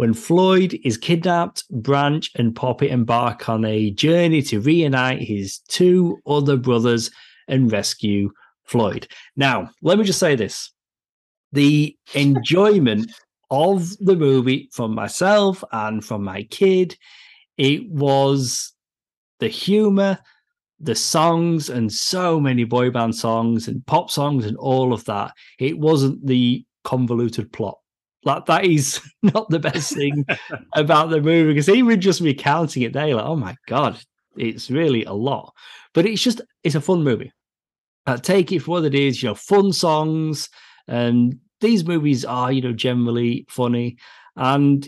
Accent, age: British, 30-49